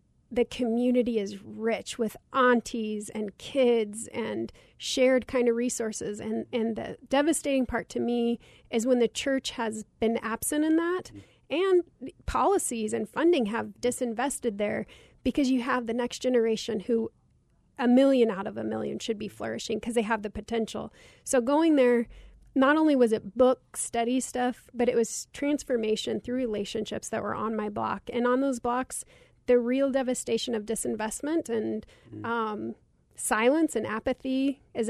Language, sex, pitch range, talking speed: English, female, 225-255 Hz, 160 wpm